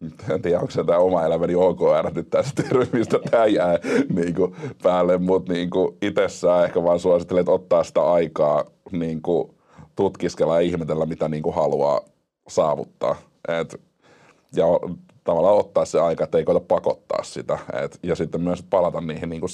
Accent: native